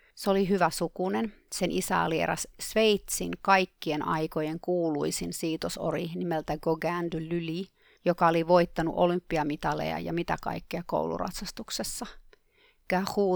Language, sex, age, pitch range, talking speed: Finnish, female, 30-49, 165-195 Hz, 115 wpm